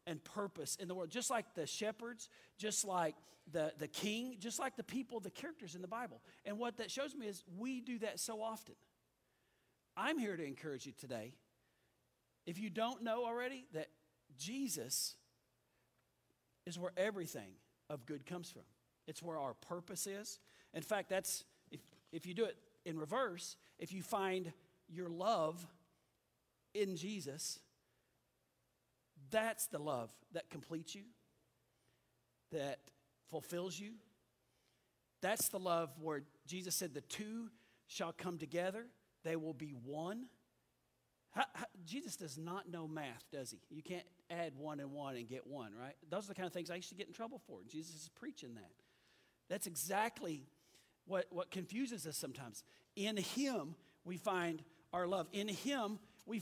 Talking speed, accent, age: 165 wpm, American, 40-59